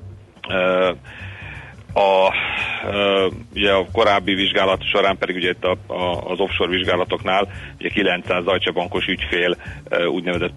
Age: 40-59